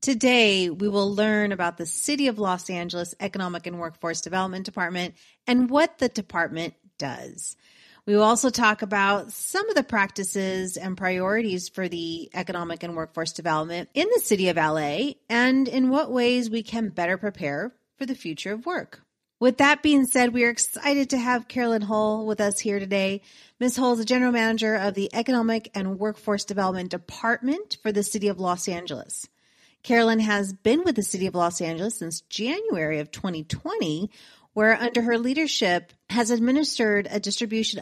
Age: 30-49